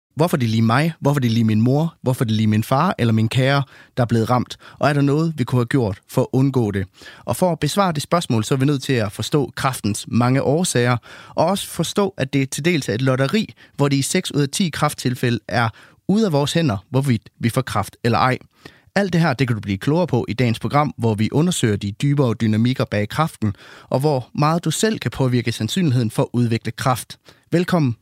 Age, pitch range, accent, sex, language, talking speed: 30-49, 115-150 Hz, native, male, Danish, 240 wpm